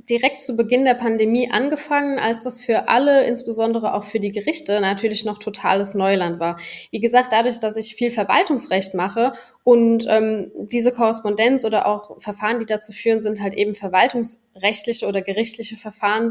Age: 10-29